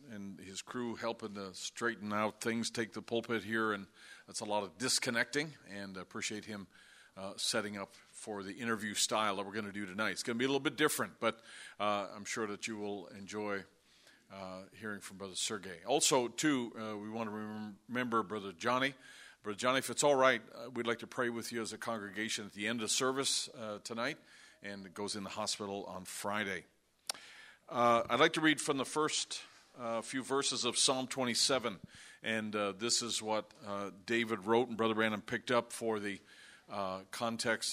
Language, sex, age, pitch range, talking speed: English, male, 50-69, 105-125 Hz, 205 wpm